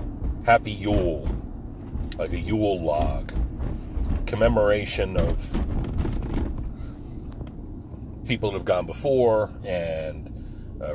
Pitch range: 85-115 Hz